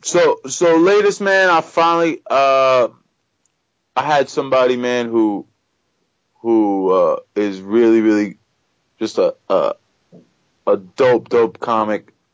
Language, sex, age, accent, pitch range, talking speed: English, male, 20-39, American, 100-140 Hz, 115 wpm